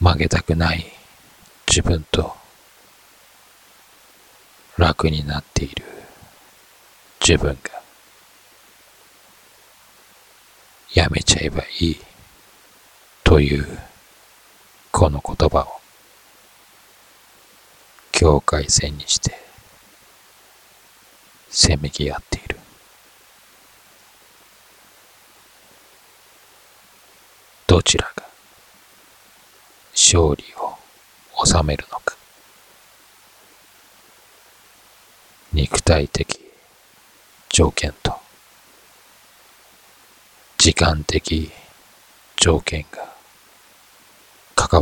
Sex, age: male, 40-59